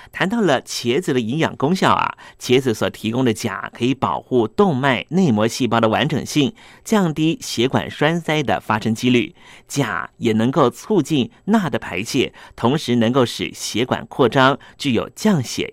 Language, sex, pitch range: Chinese, male, 115-160 Hz